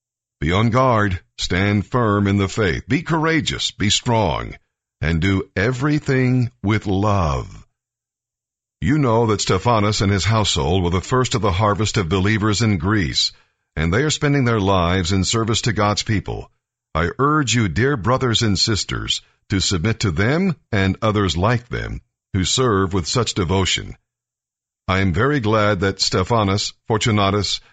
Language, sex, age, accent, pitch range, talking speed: English, male, 50-69, American, 95-125 Hz, 155 wpm